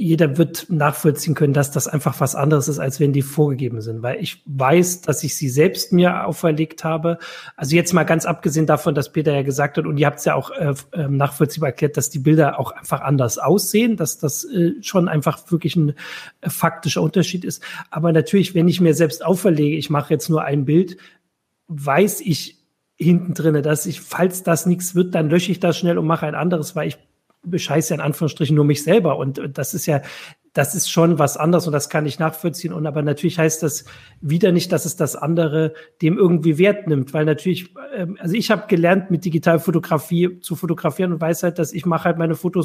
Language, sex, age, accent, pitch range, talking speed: German, male, 40-59, German, 150-175 Hz, 215 wpm